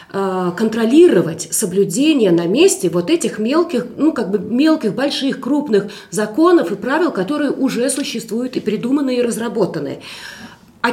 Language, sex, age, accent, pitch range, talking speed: Russian, female, 30-49, native, 200-280 Hz, 130 wpm